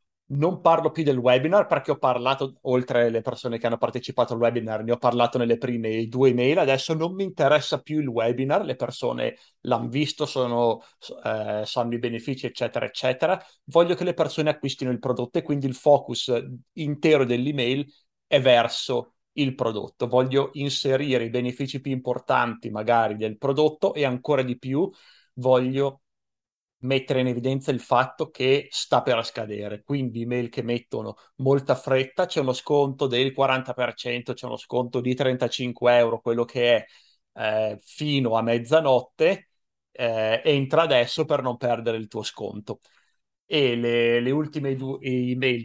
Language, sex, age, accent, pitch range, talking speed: Italian, male, 30-49, native, 120-140 Hz, 160 wpm